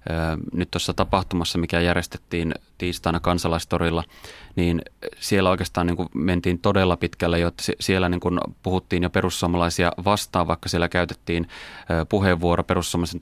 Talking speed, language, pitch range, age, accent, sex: 130 wpm, Finnish, 85-95 Hz, 20-39, native, male